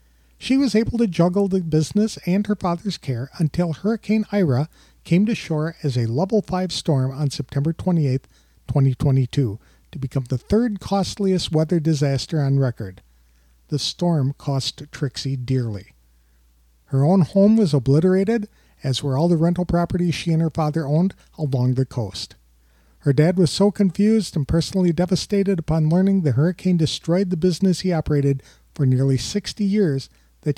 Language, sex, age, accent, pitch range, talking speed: English, male, 50-69, American, 130-185 Hz, 160 wpm